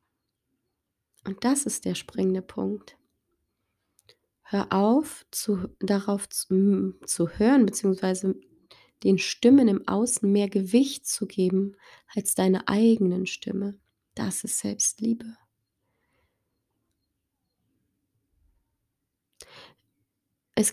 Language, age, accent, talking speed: German, 20-39, German, 85 wpm